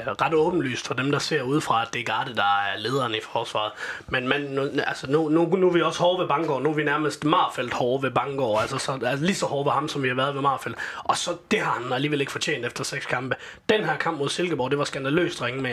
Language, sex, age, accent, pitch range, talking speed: Danish, male, 30-49, native, 125-160 Hz, 280 wpm